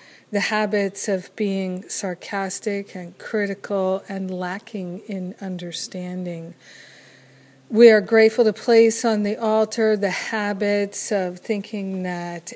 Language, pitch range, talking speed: English, 180-210 Hz, 115 wpm